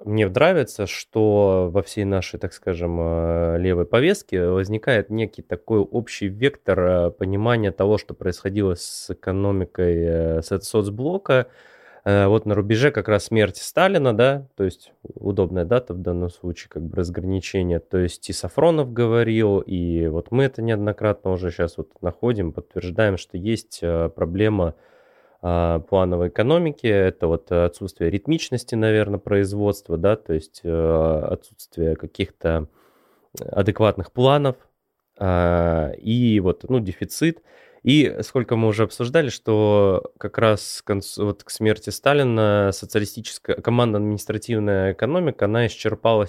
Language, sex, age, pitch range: Russian, male, 20-39, 90-110 Hz